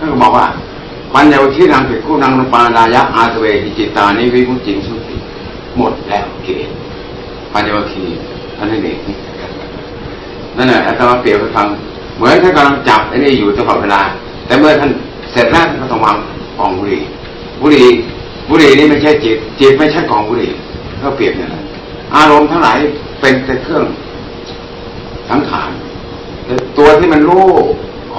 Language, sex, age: Thai, male, 60-79